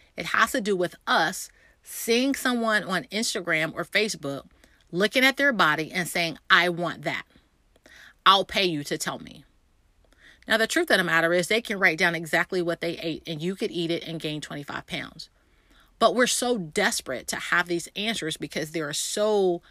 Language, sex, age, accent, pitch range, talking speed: English, female, 30-49, American, 150-195 Hz, 190 wpm